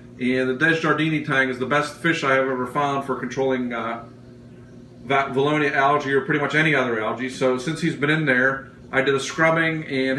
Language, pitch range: English, 120-145 Hz